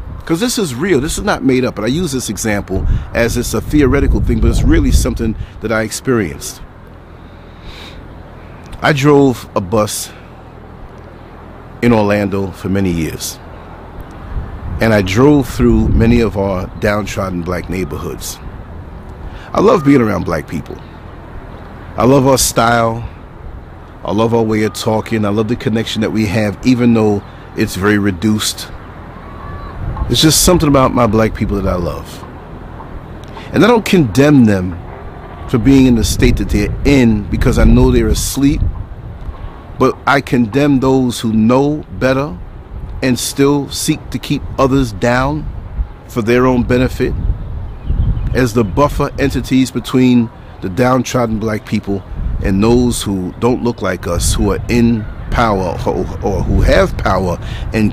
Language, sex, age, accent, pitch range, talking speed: English, male, 40-59, American, 95-125 Hz, 150 wpm